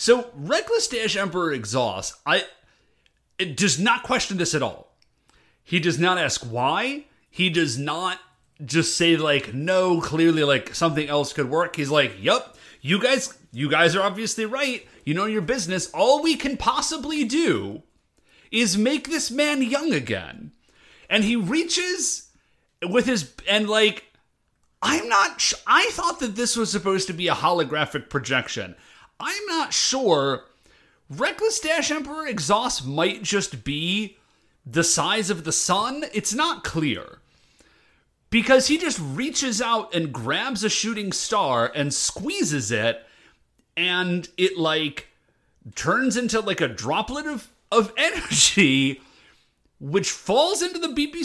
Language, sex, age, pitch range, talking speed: English, male, 30-49, 165-265 Hz, 145 wpm